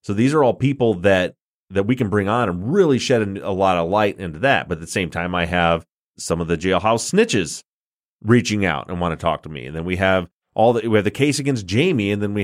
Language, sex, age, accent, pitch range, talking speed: English, male, 30-49, American, 90-120 Hz, 265 wpm